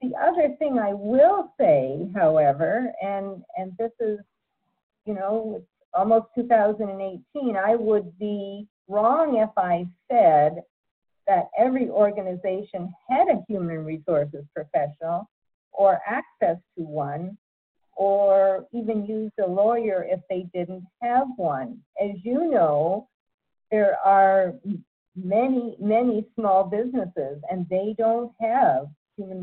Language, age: English, 50-69